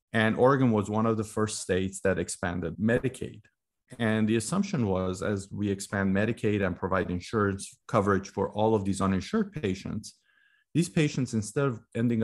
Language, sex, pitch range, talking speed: English, male, 100-135 Hz, 165 wpm